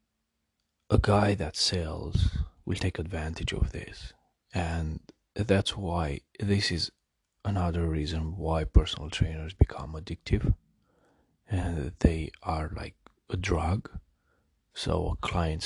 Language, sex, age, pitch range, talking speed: English, male, 30-49, 85-110 Hz, 115 wpm